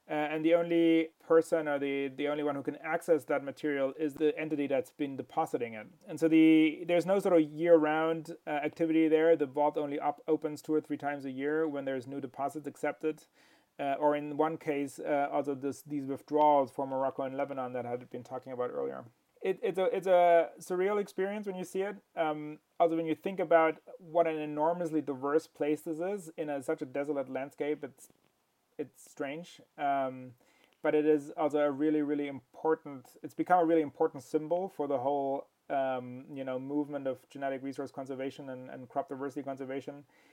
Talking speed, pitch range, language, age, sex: 200 wpm, 140-160 Hz, English, 30-49, male